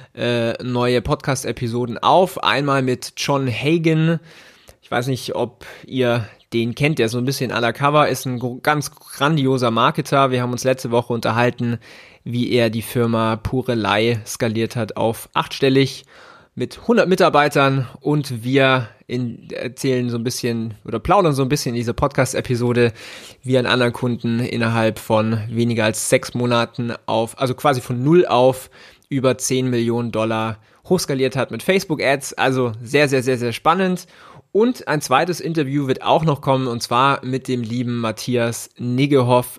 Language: German